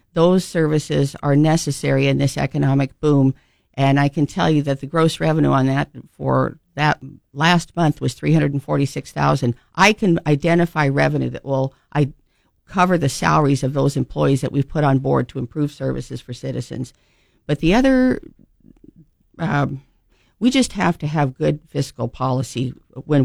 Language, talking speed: English, 155 wpm